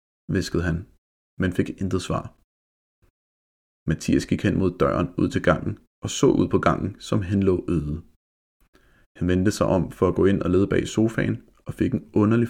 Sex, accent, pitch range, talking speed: male, native, 75-100 Hz, 185 wpm